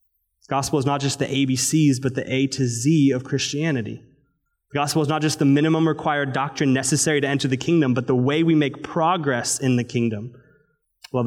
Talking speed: 195 wpm